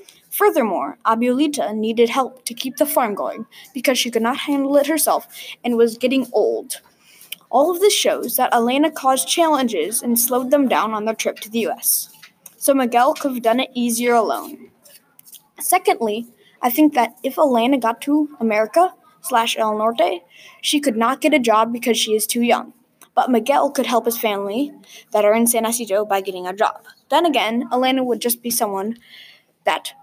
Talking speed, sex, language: 185 wpm, female, English